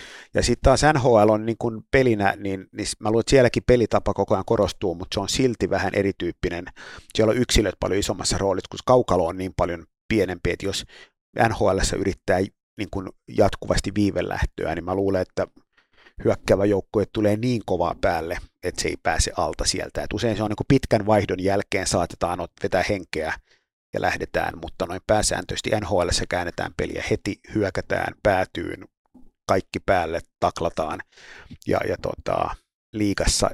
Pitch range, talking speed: 95-110 Hz, 155 wpm